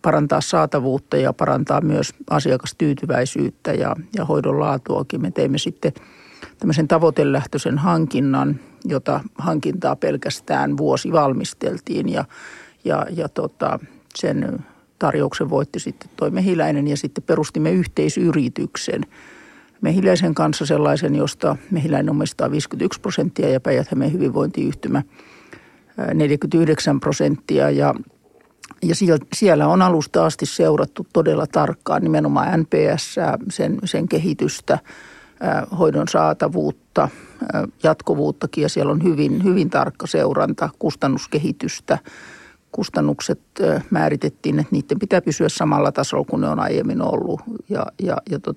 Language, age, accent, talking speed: Finnish, 50-69, native, 105 wpm